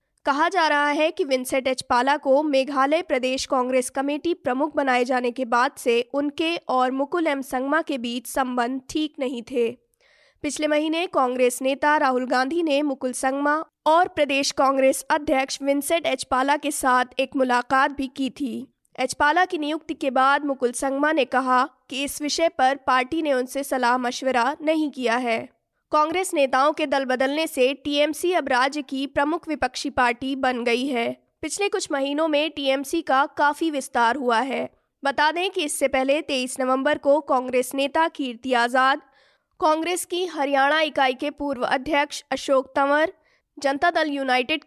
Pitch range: 255-300 Hz